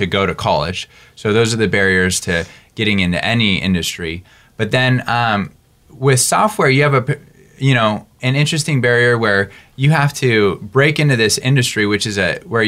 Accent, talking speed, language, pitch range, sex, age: American, 185 wpm, English, 95-125 Hz, male, 20-39